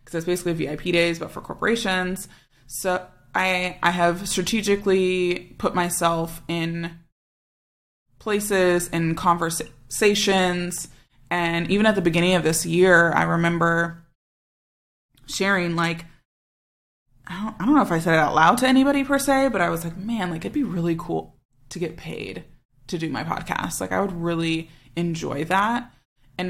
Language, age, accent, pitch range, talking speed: English, 20-39, American, 160-185 Hz, 160 wpm